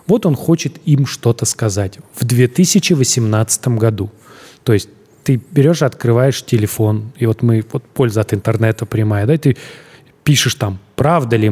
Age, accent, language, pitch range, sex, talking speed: 30-49, native, Russian, 110-145 Hz, male, 155 wpm